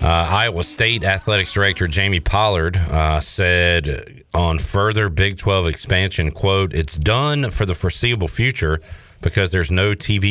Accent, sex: American, male